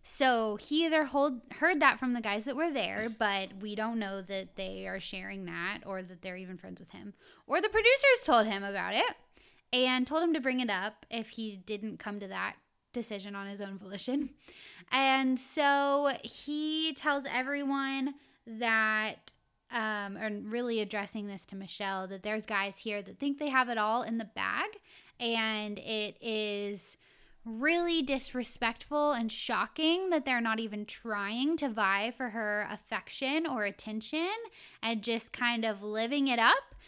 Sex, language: female, English